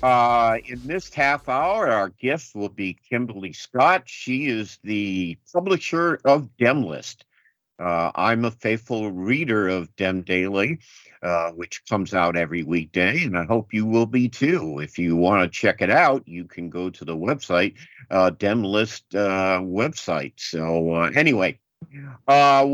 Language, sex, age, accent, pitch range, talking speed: English, male, 50-69, American, 90-125 Hz, 155 wpm